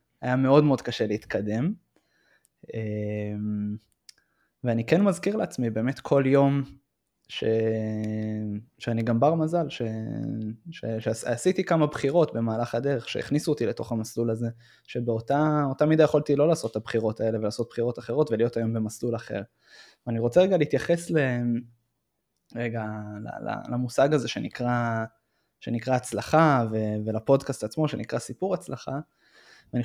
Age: 20-39